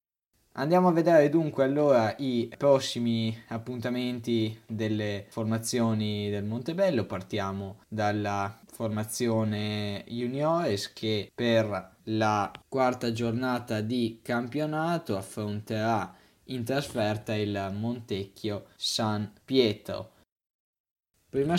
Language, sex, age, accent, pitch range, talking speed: Italian, male, 20-39, native, 105-125 Hz, 85 wpm